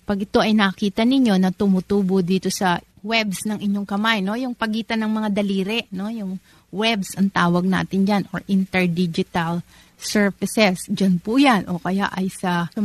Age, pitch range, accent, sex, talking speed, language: 30-49, 185-220 Hz, native, female, 175 wpm, Filipino